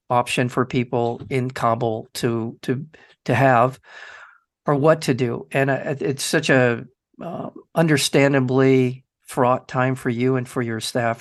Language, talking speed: English, 145 wpm